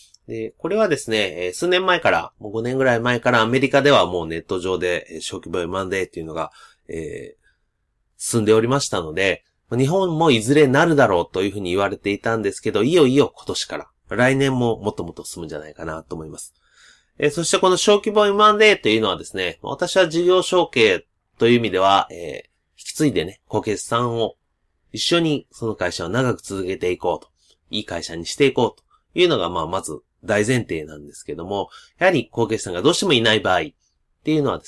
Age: 30-49